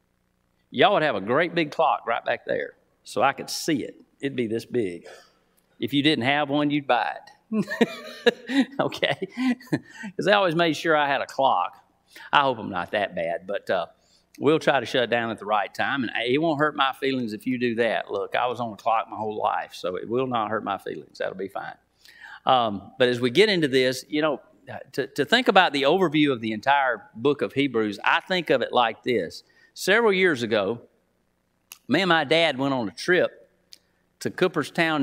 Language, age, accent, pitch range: English, 40-59, American, 130-180 Hz